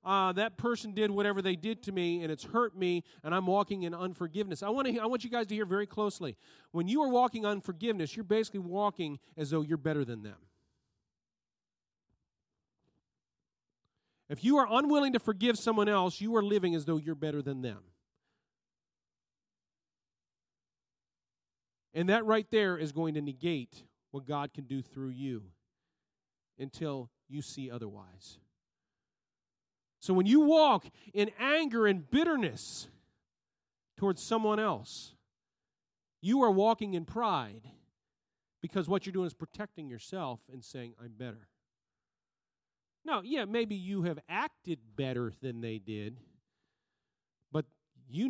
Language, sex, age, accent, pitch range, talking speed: English, male, 40-59, American, 140-210 Hz, 145 wpm